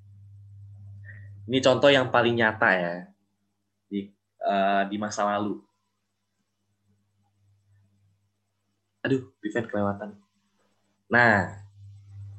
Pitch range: 100-125 Hz